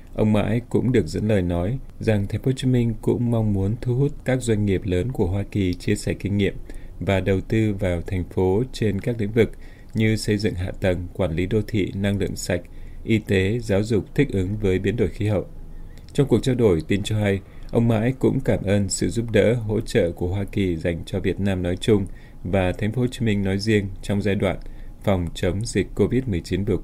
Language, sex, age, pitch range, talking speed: Vietnamese, male, 20-39, 95-110 Hz, 235 wpm